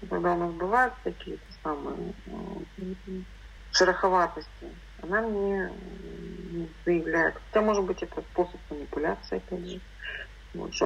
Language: Russian